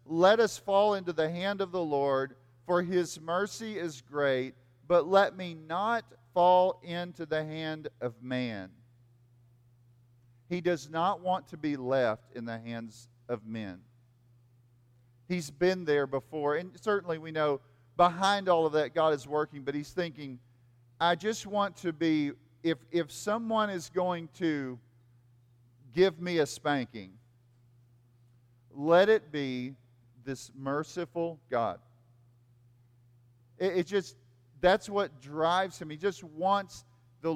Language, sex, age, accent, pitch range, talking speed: English, male, 40-59, American, 120-175 Hz, 140 wpm